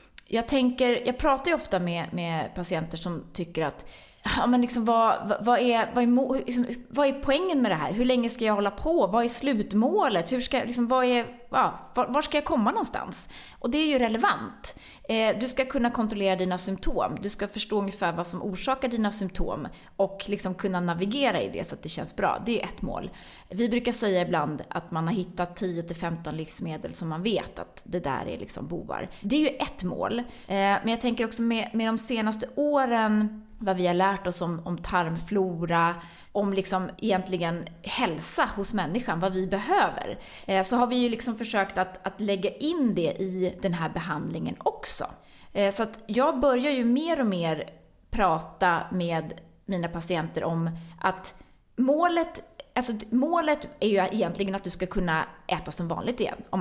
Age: 20-39